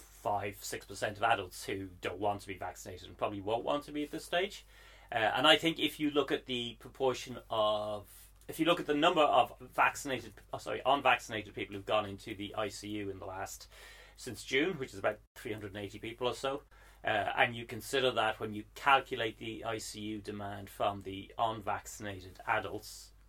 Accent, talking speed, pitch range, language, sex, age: British, 190 wpm, 100-125 Hz, English, male, 30-49